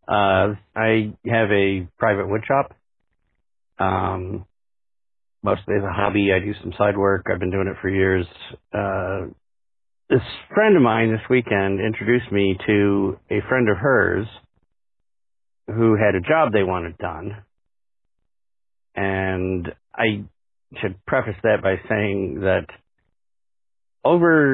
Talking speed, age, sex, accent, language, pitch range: 130 wpm, 50-69, male, American, English, 90-105 Hz